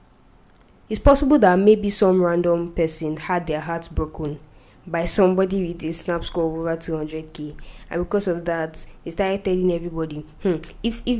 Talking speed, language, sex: 165 wpm, English, female